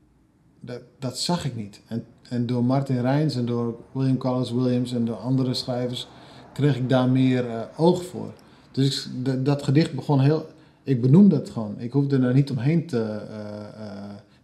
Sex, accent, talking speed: male, Dutch, 185 wpm